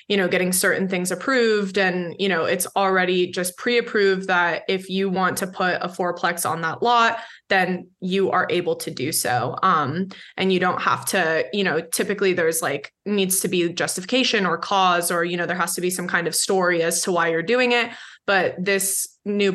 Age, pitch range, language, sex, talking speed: 20-39, 180-205 Hz, English, female, 210 wpm